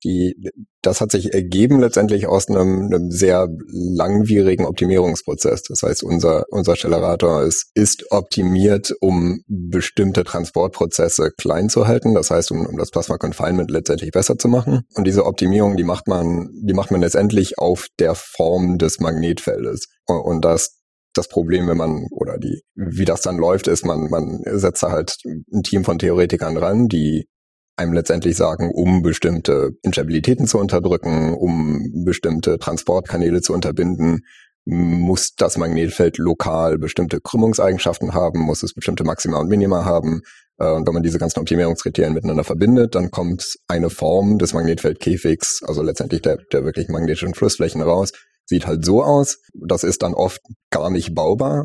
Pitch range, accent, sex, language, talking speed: 85-100 Hz, German, male, German, 155 wpm